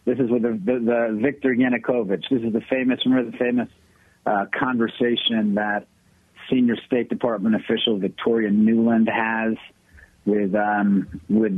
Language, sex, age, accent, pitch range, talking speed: English, male, 50-69, American, 110-140 Hz, 140 wpm